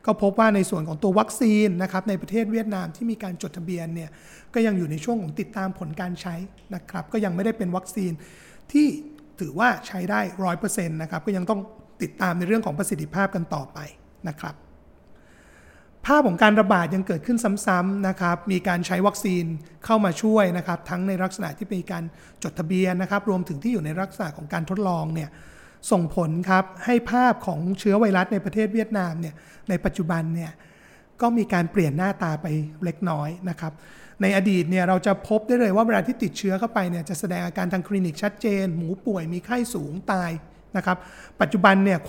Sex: male